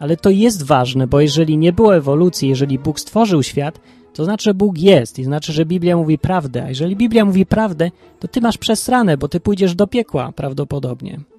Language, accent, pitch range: Polish, native, 145-195 Hz